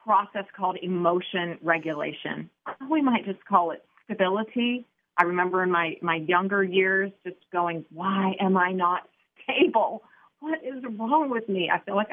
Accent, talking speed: American, 160 wpm